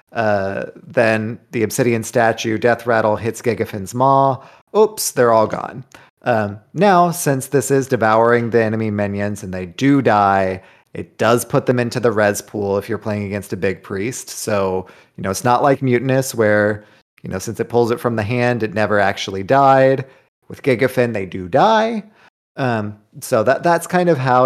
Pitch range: 105-130 Hz